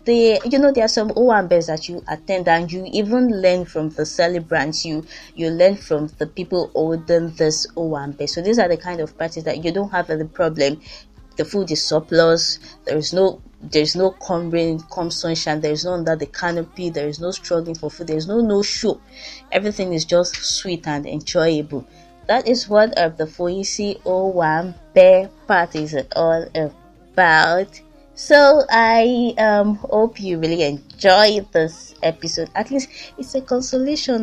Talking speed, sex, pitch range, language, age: 175 wpm, female, 165-230 Hz, English, 20-39